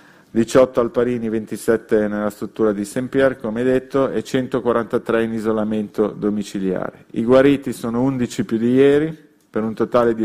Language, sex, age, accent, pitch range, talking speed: Italian, male, 40-59, native, 110-130 Hz, 145 wpm